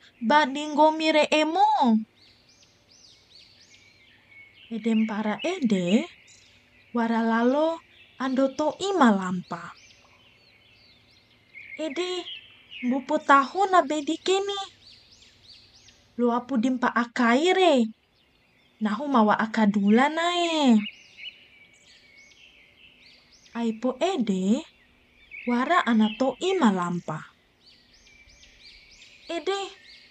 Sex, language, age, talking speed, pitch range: female, Indonesian, 20-39, 55 wpm, 205-305 Hz